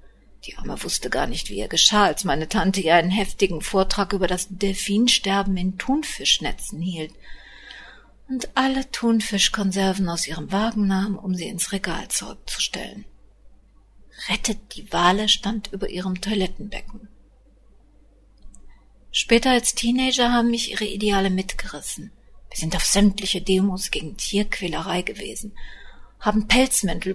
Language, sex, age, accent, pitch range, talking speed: German, female, 50-69, German, 180-230 Hz, 130 wpm